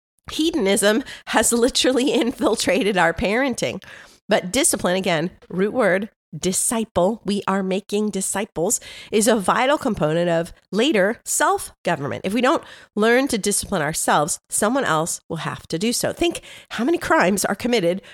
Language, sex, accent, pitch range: English, female, American, 175-235 Hz